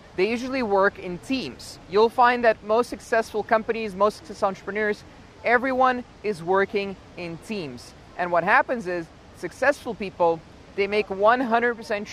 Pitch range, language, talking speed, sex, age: 185-230 Hz, English, 140 wpm, male, 20-39